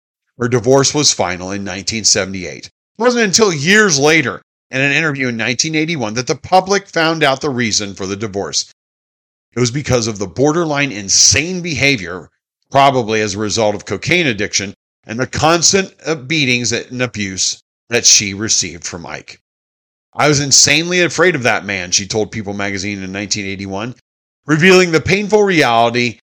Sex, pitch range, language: male, 105-150 Hz, English